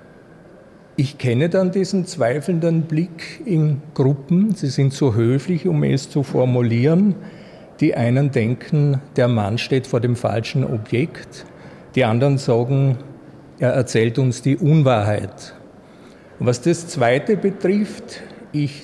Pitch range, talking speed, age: 120-165 Hz, 125 wpm, 50-69